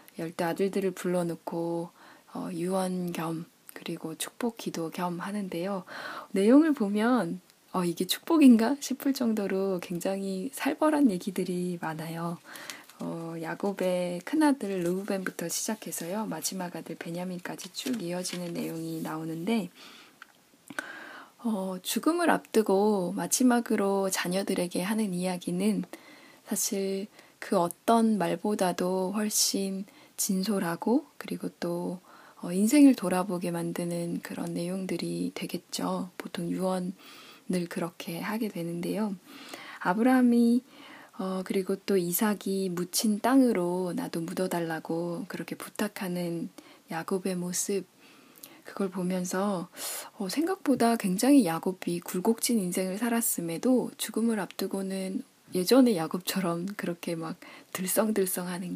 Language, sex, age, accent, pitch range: Korean, female, 10-29, native, 175-230 Hz